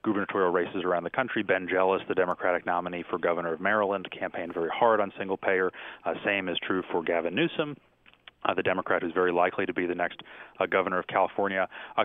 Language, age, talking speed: English, 30-49, 210 wpm